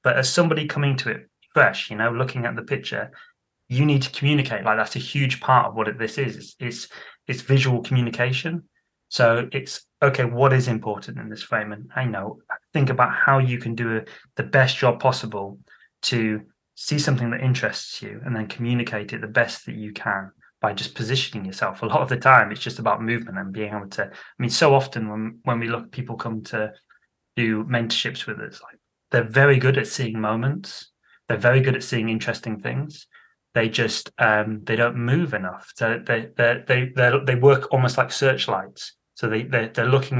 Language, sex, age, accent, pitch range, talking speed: English, male, 20-39, British, 110-135 Hz, 205 wpm